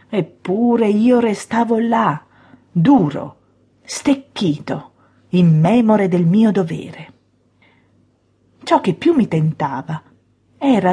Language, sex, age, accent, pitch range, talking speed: Italian, female, 40-59, native, 170-255 Hz, 95 wpm